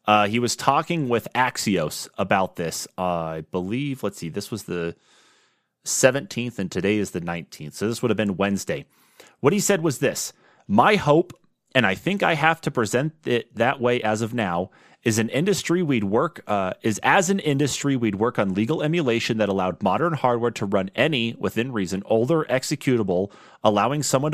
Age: 30-49